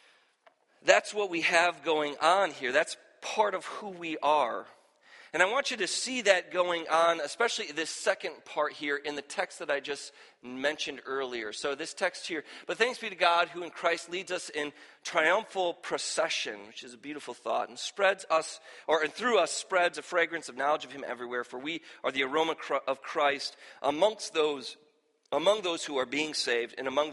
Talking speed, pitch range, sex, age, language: 195 wpm, 140-180 Hz, male, 40-59, English